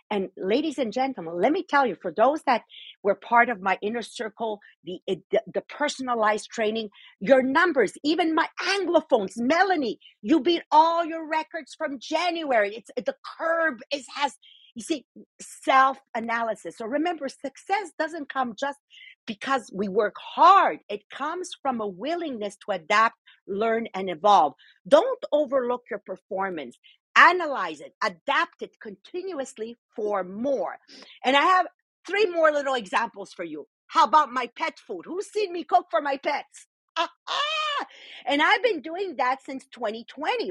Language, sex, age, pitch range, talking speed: English, female, 50-69, 220-330 Hz, 155 wpm